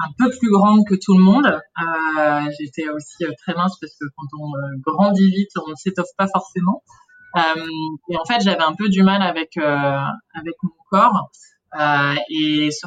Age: 20-39